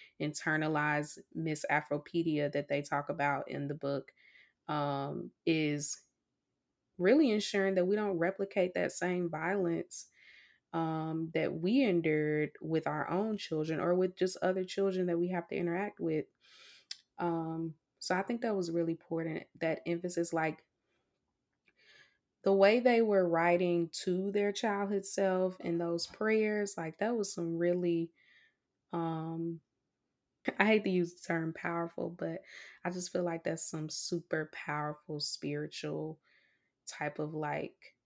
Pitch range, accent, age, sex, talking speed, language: 155-180 Hz, American, 20-39, female, 140 wpm, English